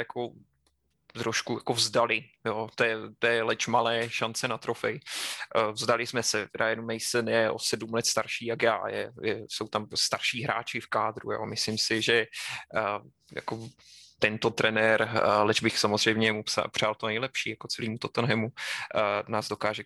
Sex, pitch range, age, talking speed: male, 110-120 Hz, 20-39, 160 wpm